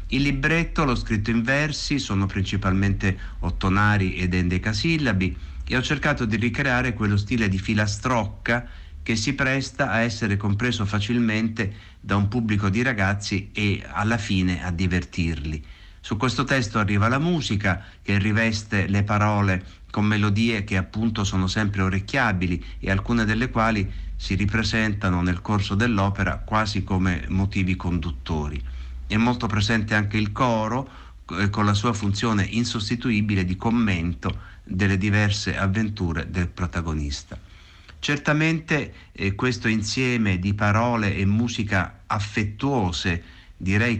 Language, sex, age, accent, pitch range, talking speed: Italian, male, 50-69, native, 95-115 Hz, 130 wpm